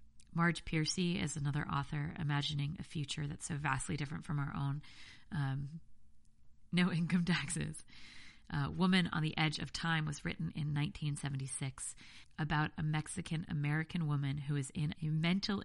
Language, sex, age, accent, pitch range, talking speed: English, female, 40-59, American, 140-160 Hz, 145 wpm